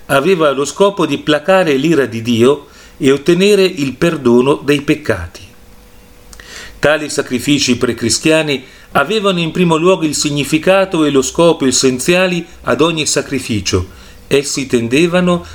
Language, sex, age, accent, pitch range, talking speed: Italian, male, 40-59, native, 115-160 Hz, 125 wpm